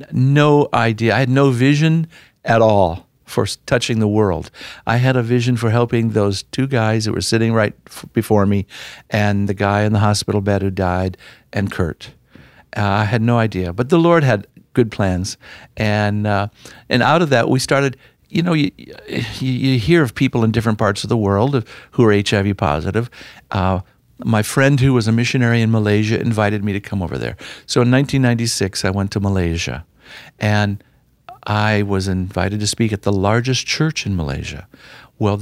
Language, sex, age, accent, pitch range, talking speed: English, male, 60-79, American, 100-130 Hz, 185 wpm